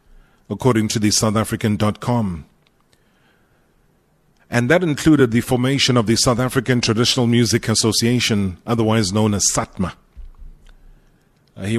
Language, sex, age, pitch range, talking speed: English, male, 30-49, 105-125 Hz, 105 wpm